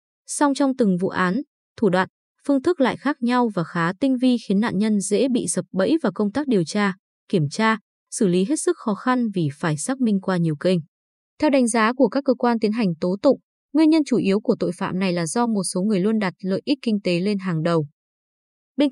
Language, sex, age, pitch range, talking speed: Vietnamese, female, 20-39, 190-255 Hz, 245 wpm